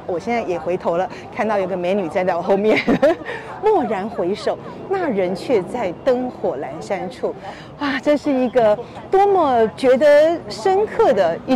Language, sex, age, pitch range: Chinese, female, 40-59, 205-310 Hz